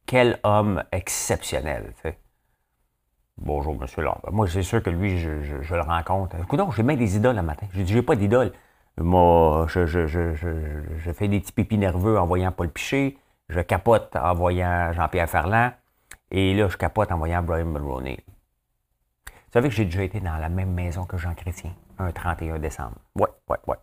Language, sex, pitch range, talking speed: French, male, 80-110 Hz, 195 wpm